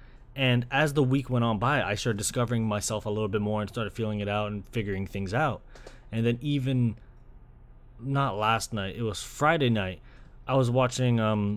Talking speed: 195 wpm